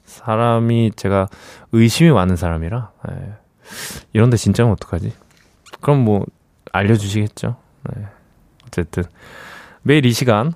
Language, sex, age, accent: Korean, male, 20-39, native